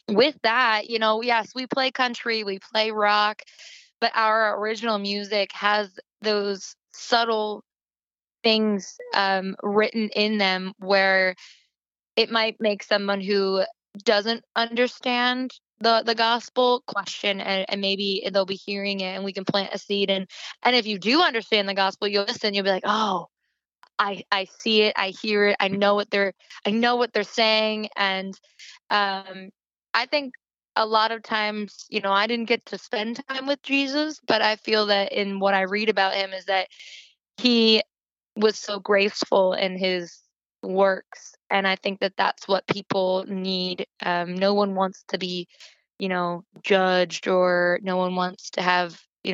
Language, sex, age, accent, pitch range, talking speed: English, female, 20-39, American, 190-220 Hz, 170 wpm